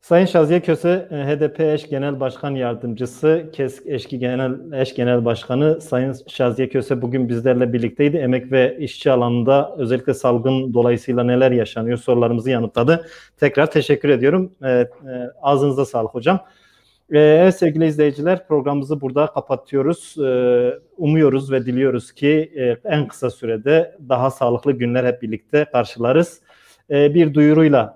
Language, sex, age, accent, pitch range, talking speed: Turkish, male, 40-59, native, 125-145 Hz, 125 wpm